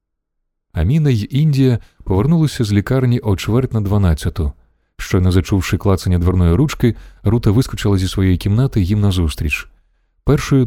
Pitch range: 85-110 Hz